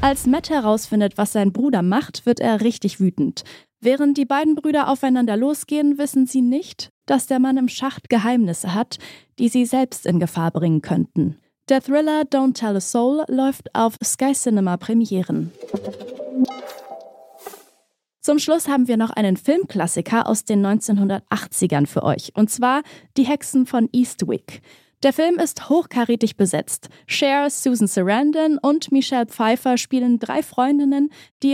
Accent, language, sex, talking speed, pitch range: German, German, female, 145 wpm, 215-275 Hz